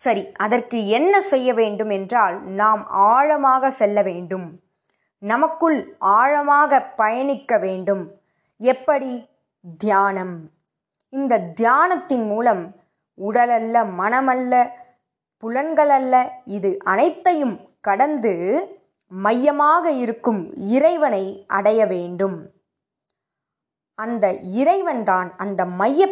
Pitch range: 195-270 Hz